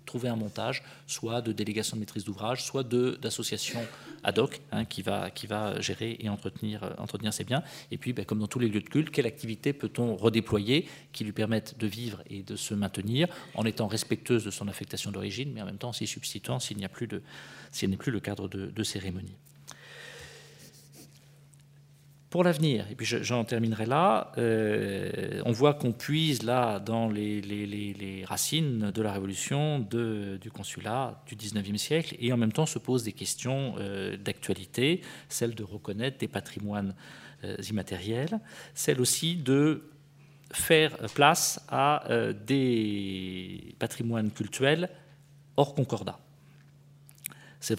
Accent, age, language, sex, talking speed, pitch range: French, 40-59, French, male, 160 wpm, 105-145 Hz